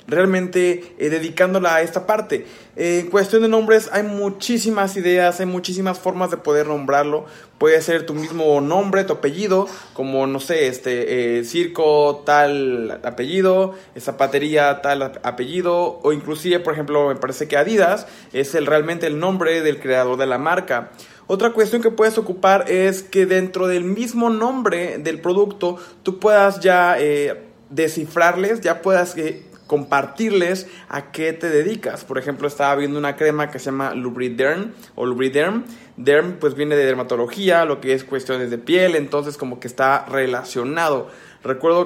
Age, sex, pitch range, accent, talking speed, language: 20-39, male, 140-185 Hz, Mexican, 160 wpm, Spanish